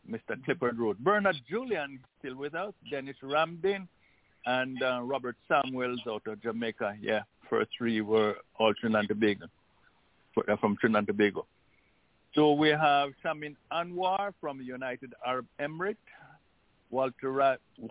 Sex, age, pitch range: male, 60-79, 120-150 Hz